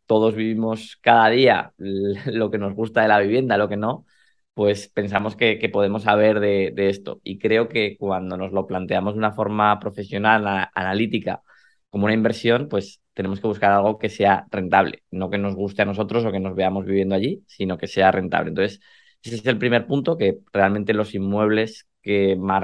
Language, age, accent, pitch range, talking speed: Spanish, 20-39, Spanish, 95-105 Hz, 195 wpm